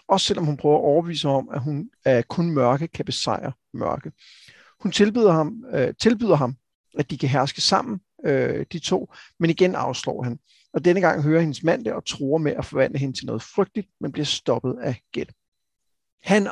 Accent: native